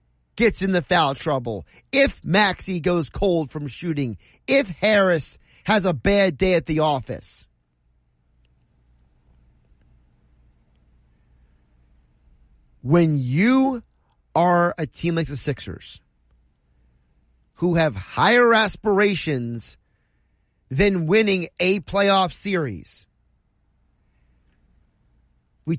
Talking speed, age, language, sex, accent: 90 wpm, 30-49, English, male, American